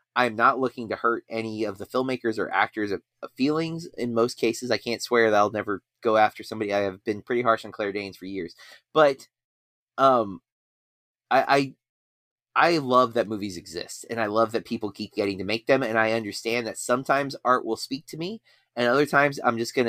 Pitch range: 105-135 Hz